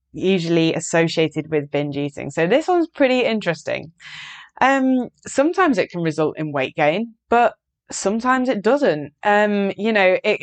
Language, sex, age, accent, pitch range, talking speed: English, female, 20-39, British, 170-230 Hz, 150 wpm